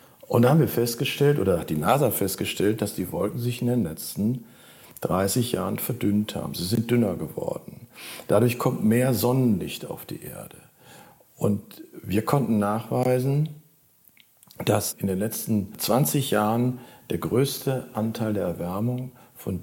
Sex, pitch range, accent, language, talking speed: male, 95-120 Hz, German, German, 145 wpm